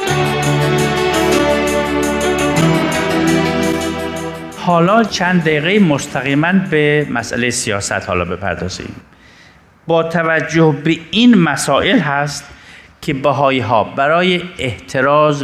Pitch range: 110-155 Hz